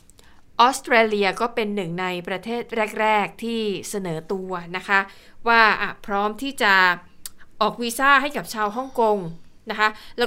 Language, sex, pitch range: Thai, female, 200-245 Hz